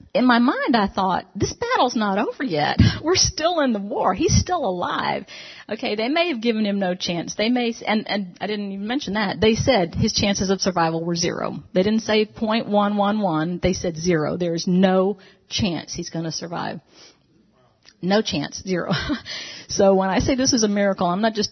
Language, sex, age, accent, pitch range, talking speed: English, female, 40-59, American, 180-220 Hz, 200 wpm